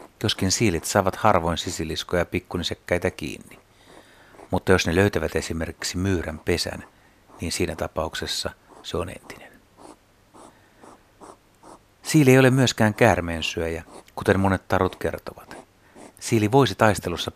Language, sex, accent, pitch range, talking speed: Finnish, male, native, 85-105 Hz, 115 wpm